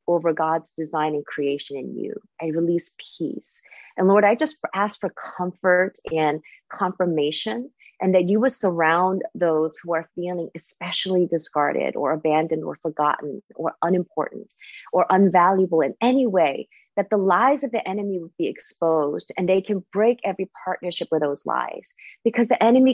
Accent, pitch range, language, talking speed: American, 155-200 Hz, English, 160 wpm